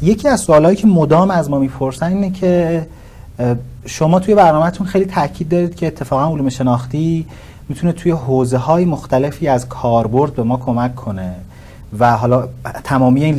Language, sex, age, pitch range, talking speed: Persian, male, 40-59, 125-155 Hz, 150 wpm